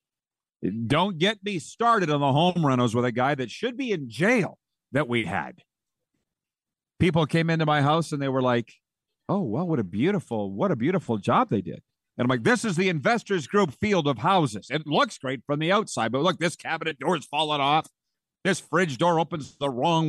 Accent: American